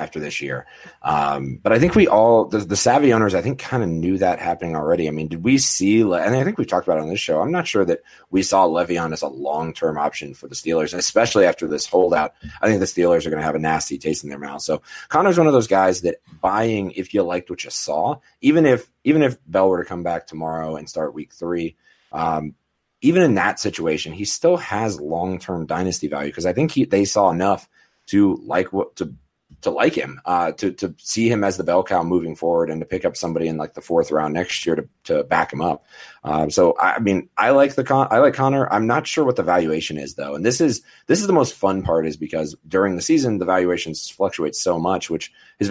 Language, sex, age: English, male, 30-49